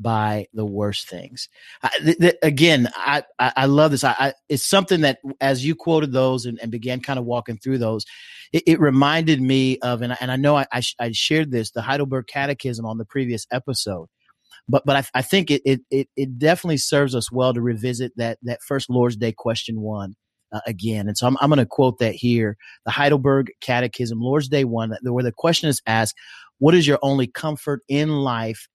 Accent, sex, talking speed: American, male, 215 wpm